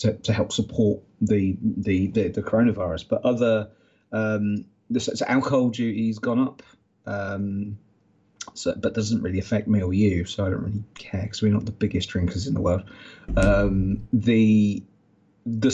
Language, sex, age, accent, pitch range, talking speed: English, male, 30-49, British, 100-110 Hz, 170 wpm